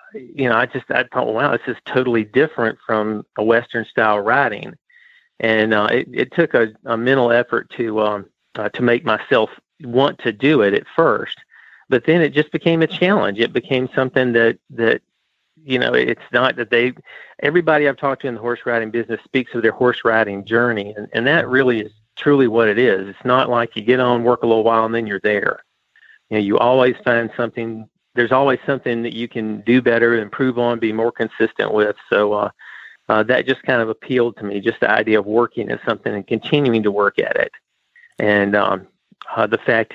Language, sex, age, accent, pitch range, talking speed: English, male, 40-59, American, 110-130 Hz, 205 wpm